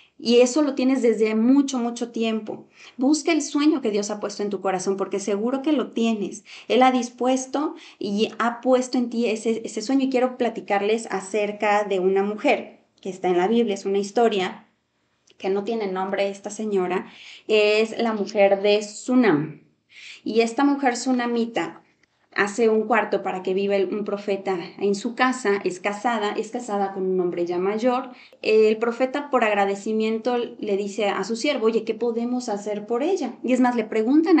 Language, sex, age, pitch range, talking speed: Spanish, female, 20-39, 200-255 Hz, 180 wpm